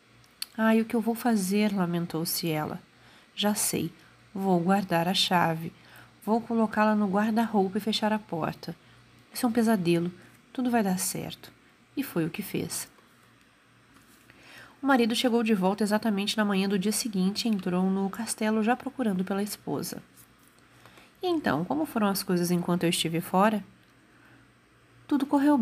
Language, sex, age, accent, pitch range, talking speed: Portuguese, female, 30-49, Brazilian, 175-225 Hz, 165 wpm